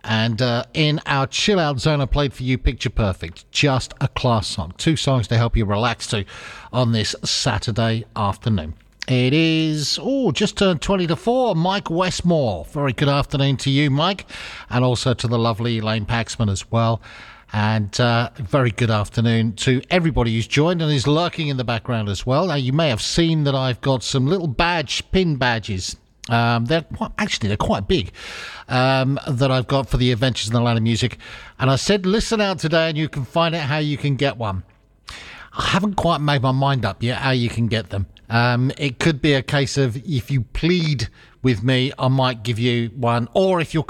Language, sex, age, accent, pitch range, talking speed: English, male, 50-69, British, 115-150 Hz, 200 wpm